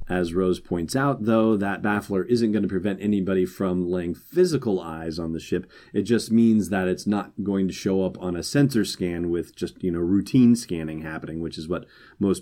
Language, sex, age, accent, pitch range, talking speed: English, male, 30-49, American, 85-100 Hz, 215 wpm